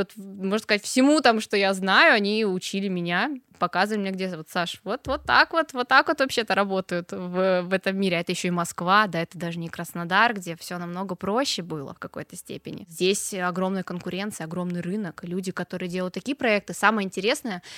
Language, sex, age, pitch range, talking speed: Russian, female, 20-39, 190-255 Hz, 195 wpm